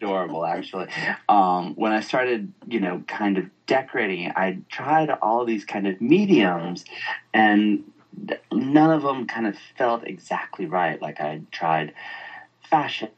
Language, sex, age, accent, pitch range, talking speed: English, male, 30-49, American, 85-135 Hz, 140 wpm